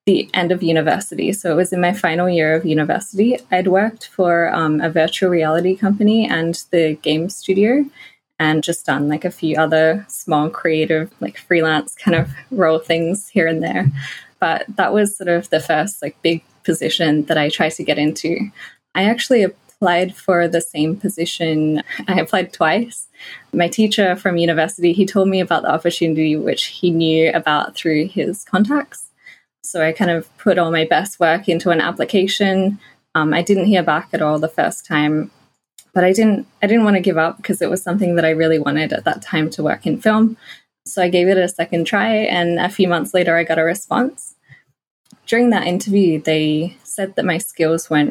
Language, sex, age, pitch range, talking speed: English, female, 20-39, 160-190 Hz, 195 wpm